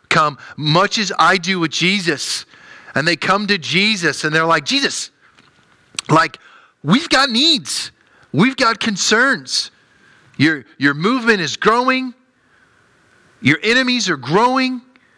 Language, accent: English, American